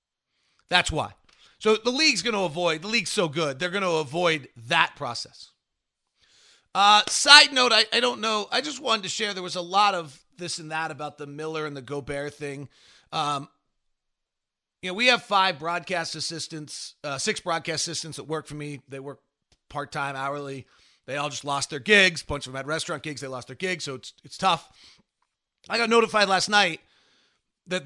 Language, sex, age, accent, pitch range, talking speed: English, male, 40-59, American, 140-185 Hz, 200 wpm